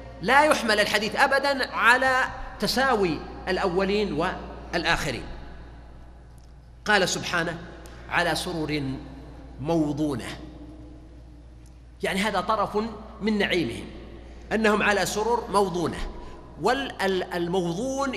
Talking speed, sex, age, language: 75 wpm, male, 40-59, Arabic